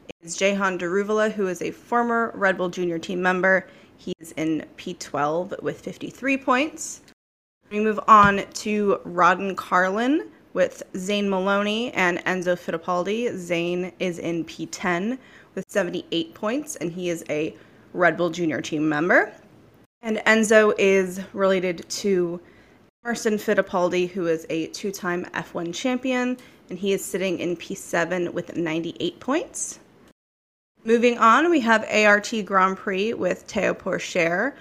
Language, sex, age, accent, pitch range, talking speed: English, female, 20-39, American, 180-220 Hz, 135 wpm